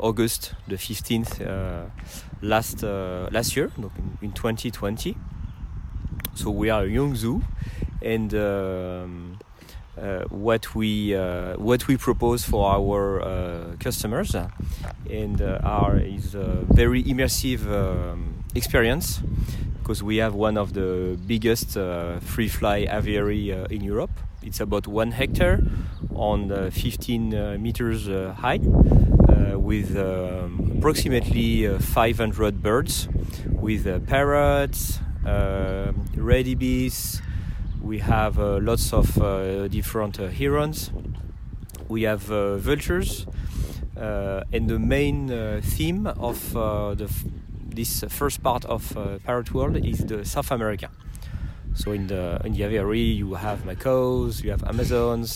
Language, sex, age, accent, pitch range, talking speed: Dutch, male, 30-49, French, 95-115 Hz, 125 wpm